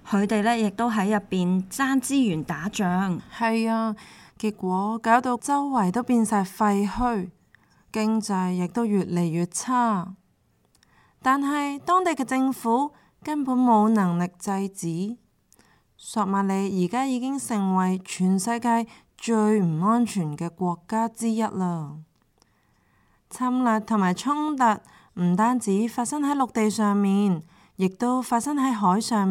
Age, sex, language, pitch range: 20-39, female, Chinese, 185-240 Hz